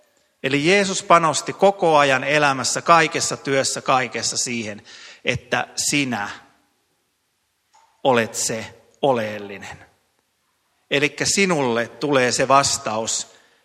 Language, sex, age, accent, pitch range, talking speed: Finnish, male, 30-49, native, 115-145 Hz, 90 wpm